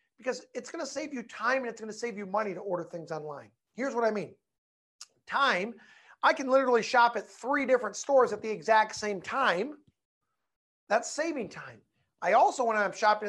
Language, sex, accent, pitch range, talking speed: English, male, American, 200-265 Hz, 200 wpm